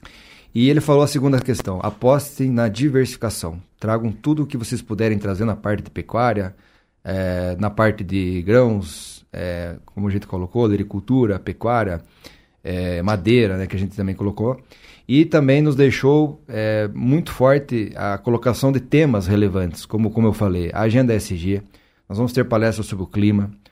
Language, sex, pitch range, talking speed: Portuguese, male, 100-125 Hz, 170 wpm